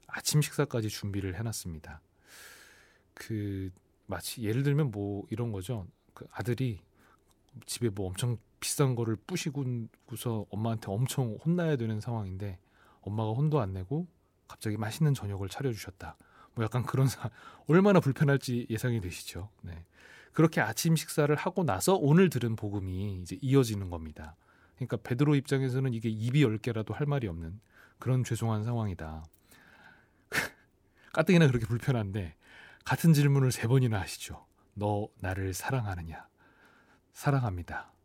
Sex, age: male, 30-49